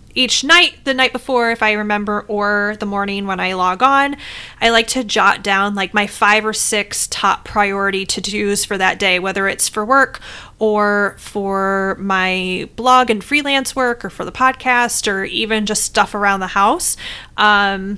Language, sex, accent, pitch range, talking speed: English, female, American, 195-245 Hz, 185 wpm